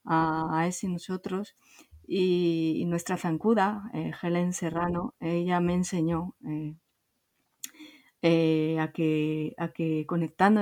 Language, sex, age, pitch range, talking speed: Spanish, female, 30-49, 160-180 Hz, 105 wpm